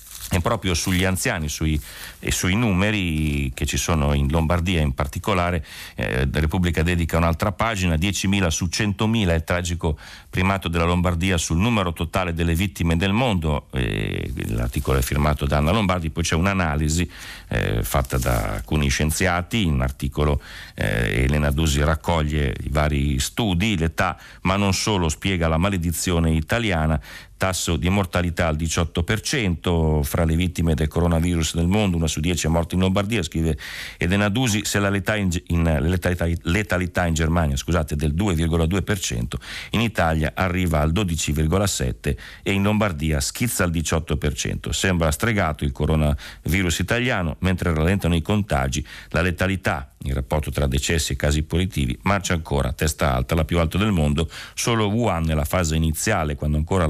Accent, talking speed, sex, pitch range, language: native, 155 wpm, male, 75-95 Hz, Italian